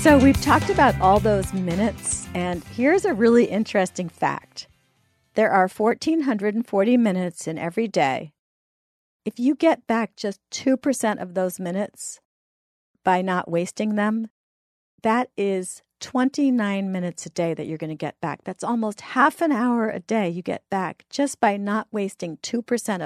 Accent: American